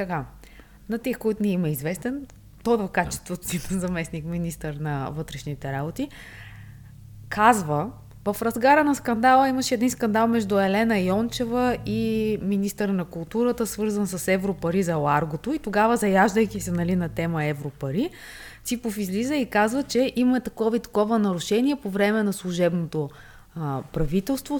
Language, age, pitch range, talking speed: Bulgarian, 20-39, 175-235 Hz, 150 wpm